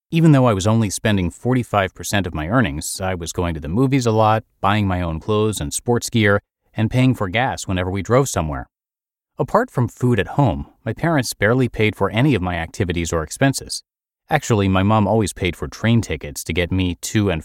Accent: American